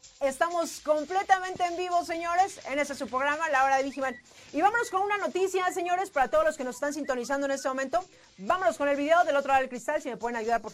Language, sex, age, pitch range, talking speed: Spanish, female, 40-59, 245-325 Hz, 245 wpm